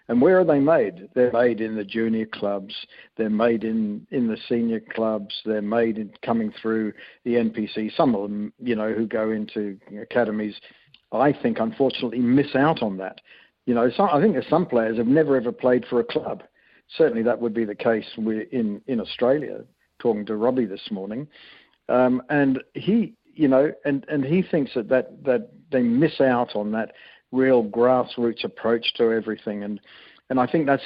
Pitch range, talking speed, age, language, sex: 110-135 Hz, 190 wpm, 60-79, English, male